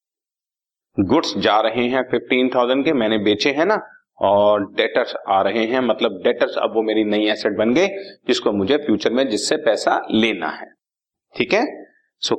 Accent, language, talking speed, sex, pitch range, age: native, Hindi, 170 wpm, male, 110-165 Hz, 40-59